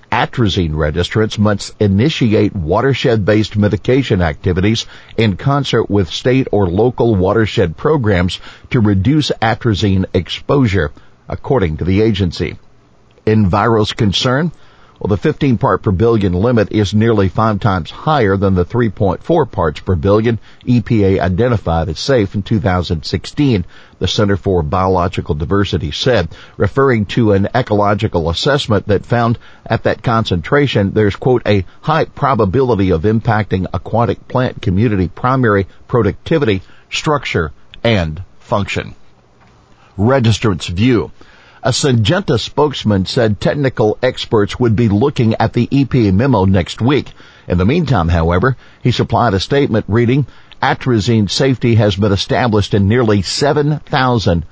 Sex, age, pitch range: male, 50-69, 95-120 Hz